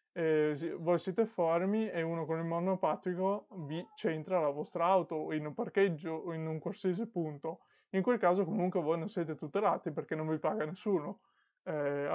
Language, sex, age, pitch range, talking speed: Italian, male, 20-39, 155-185 Hz, 180 wpm